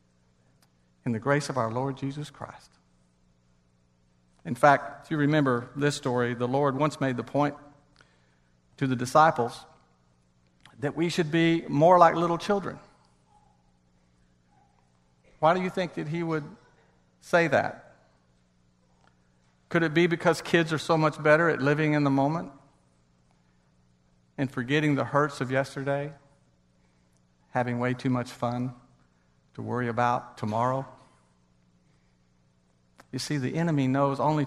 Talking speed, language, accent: 130 wpm, English, American